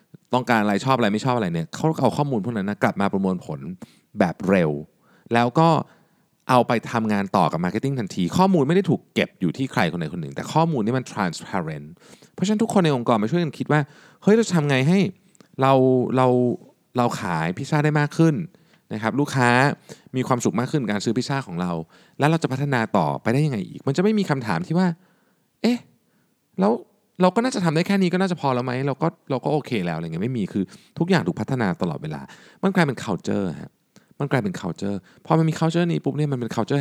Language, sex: Thai, male